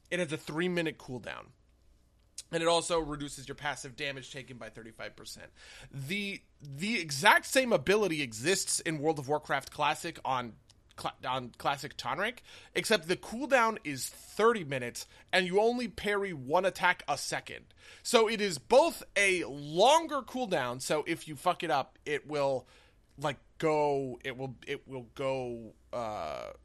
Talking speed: 155 wpm